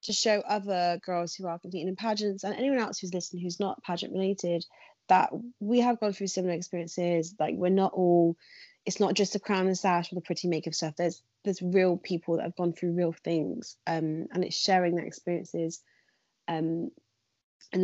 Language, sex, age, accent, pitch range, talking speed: English, female, 20-39, British, 175-195 Hz, 195 wpm